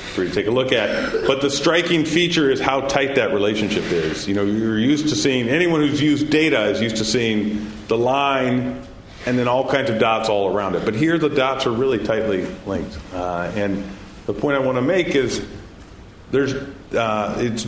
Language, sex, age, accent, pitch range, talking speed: English, male, 40-59, American, 95-135 Hz, 210 wpm